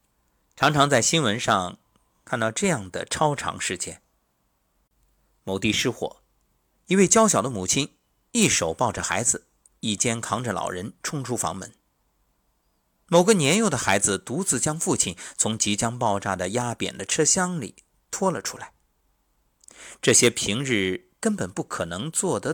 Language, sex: Chinese, male